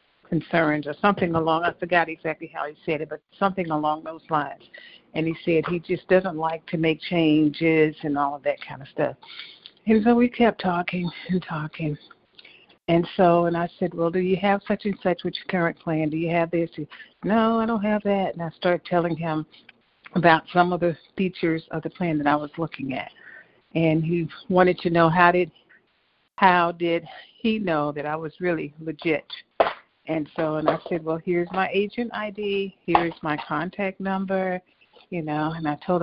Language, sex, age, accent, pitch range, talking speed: English, female, 50-69, American, 160-185 Hz, 195 wpm